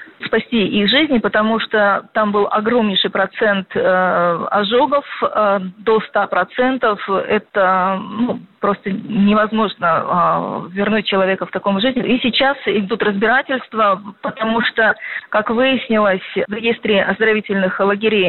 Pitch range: 195-225 Hz